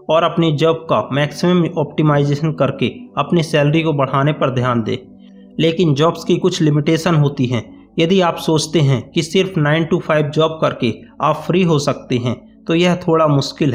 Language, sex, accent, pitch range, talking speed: Hindi, male, native, 140-175 Hz, 180 wpm